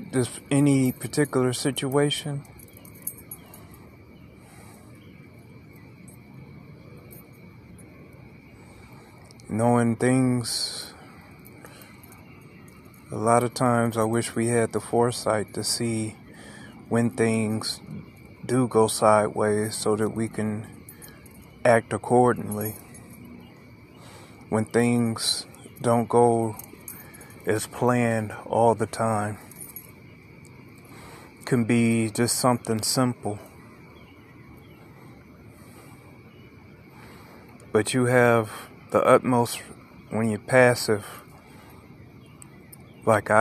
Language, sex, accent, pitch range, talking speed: English, male, American, 105-125 Hz, 70 wpm